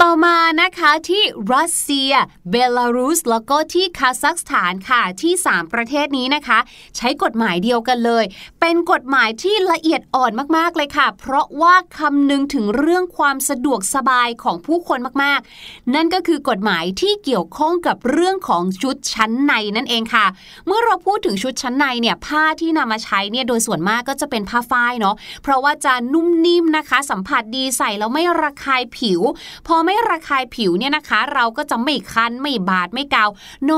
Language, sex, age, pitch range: Thai, female, 20-39, 230-315 Hz